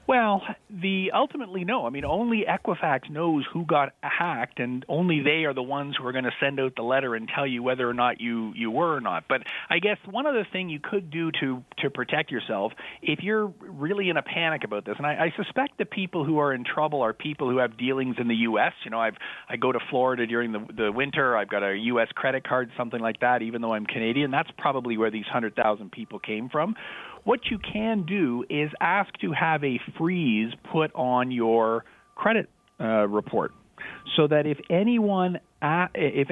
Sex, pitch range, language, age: male, 120-165 Hz, English, 40-59